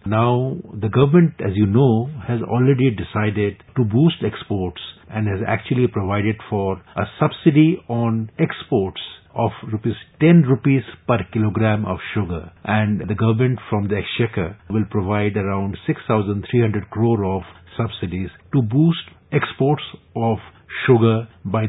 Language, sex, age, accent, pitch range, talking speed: English, male, 50-69, Indian, 100-130 Hz, 135 wpm